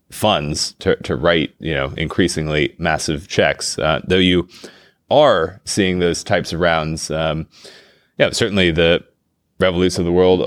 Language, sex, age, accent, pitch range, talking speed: English, male, 20-39, American, 85-100 Hz, 160 wpm